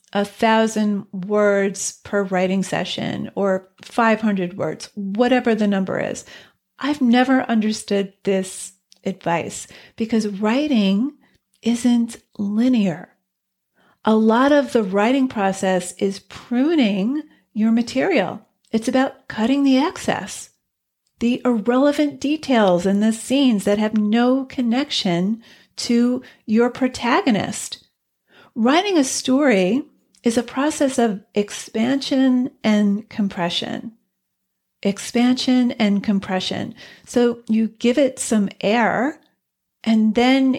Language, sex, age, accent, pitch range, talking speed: English, female, 40-59, American, 210-260 Hz, 105 wpm